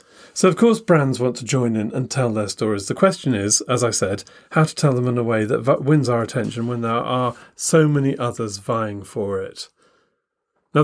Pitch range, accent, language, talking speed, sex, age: 115-140 Hz, British, English, 215 wpm, male, 40-59